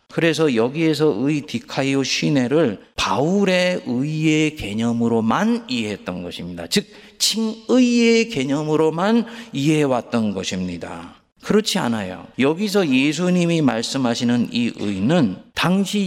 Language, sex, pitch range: Korean, male, 125-205 Hz